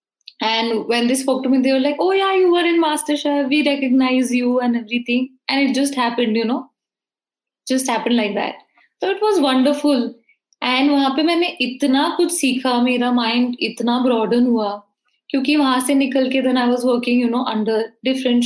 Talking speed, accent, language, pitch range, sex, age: 200 wpm, native, Hindi, 240-280 Hz, female, 20-39